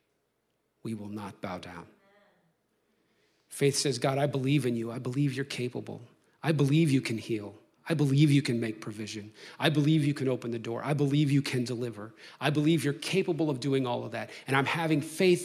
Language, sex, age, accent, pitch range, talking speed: English, male, 40-59, American, 130-200 Hz, 200 wpm